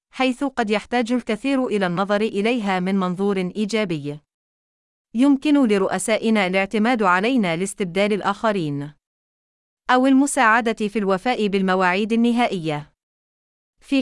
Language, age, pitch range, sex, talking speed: Arabic, 30-49, 190-240 Hz, female, 100 wpm